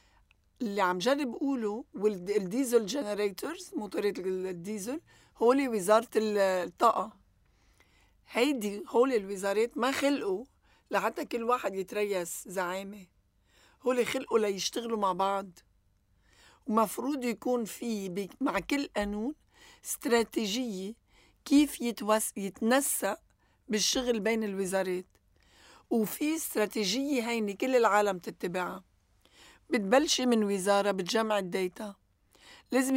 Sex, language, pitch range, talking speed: female, Arabic, 200-250 Hz, 85 wpm